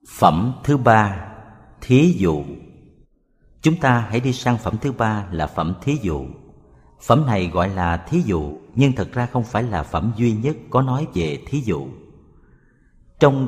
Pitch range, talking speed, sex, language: 90-135 Hz, 170 wpm, male, Vietnamese